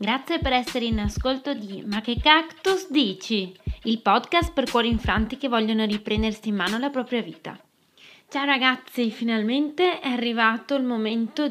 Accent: native